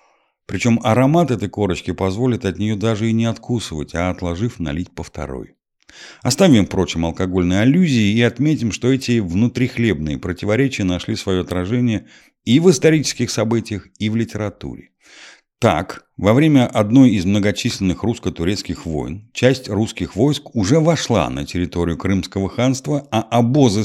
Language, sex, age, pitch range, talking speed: Russian, male, 50-69, 90-125 Hz, 140 wpm